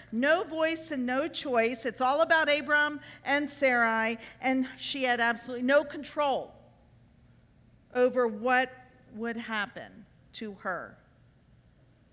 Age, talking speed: 50-69, 115 wpm